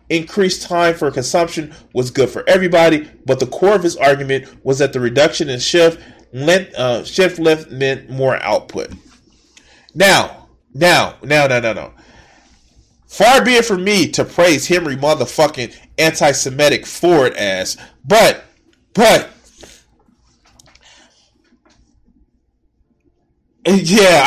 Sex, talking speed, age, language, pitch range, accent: male, 120 wpm, 30-49, English, 140-185 Hz, American